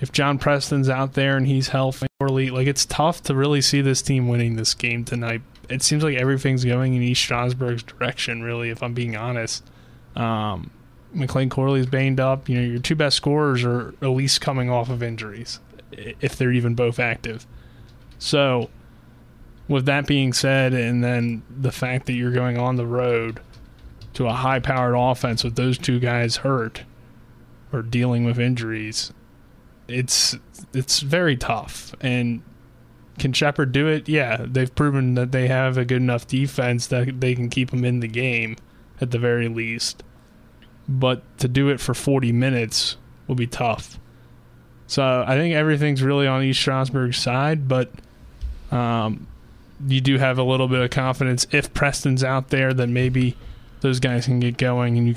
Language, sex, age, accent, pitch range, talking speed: English, male, 20-39, American, 120-135 Hz, 170 wpm